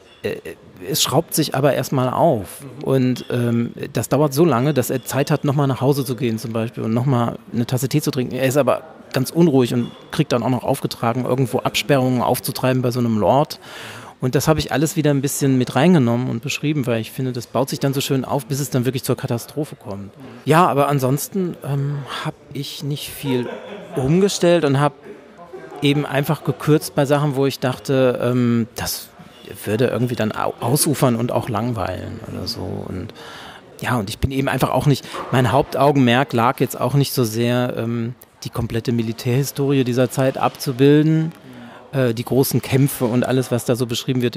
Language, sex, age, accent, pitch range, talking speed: German, male, 40-59, German, 120-140 Hz, 190 wpm